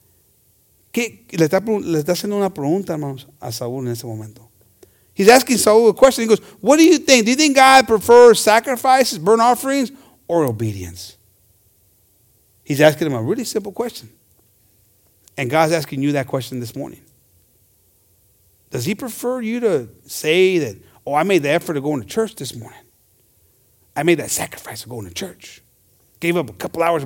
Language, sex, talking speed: English, male, 150 wpm